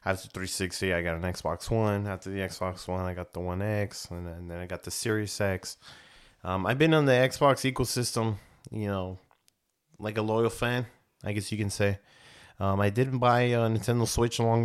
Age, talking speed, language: 20-39, 215 wpm, English